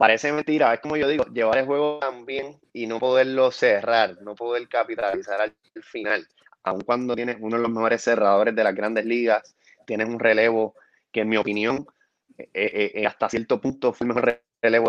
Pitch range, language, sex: 110-135 Hz, Spanish, male